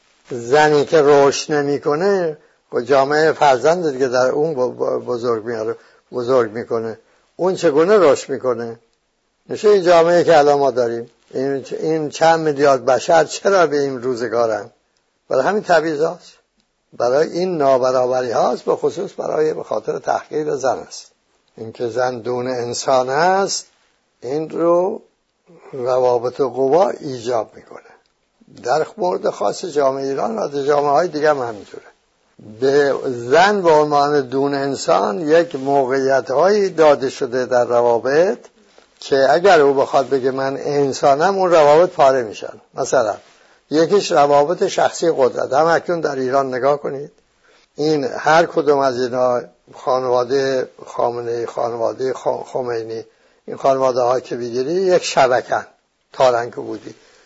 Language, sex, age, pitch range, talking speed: English, male, 60-79, 125-160 Hz, 130 wpm